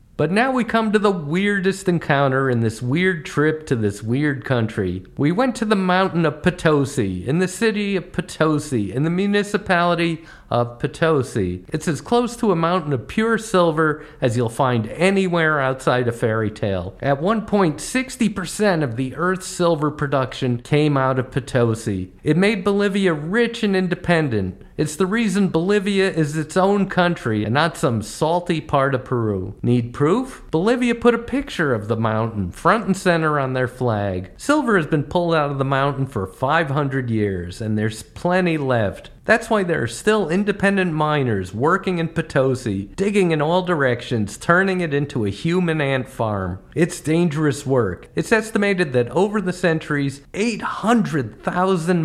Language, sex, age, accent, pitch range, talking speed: English, male, 50-69, American, 125-185 Hz, 170 wpm